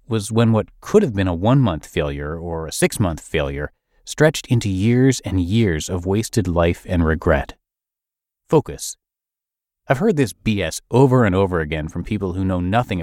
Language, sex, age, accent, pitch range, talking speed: English, male, 30-49, American, 95-130 Hz, 170 wpm